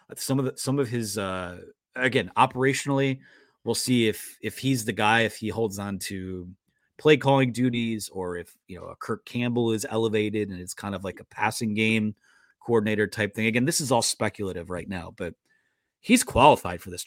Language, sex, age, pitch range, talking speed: English, male, 30-49, 105-130 Hz, 195 wpm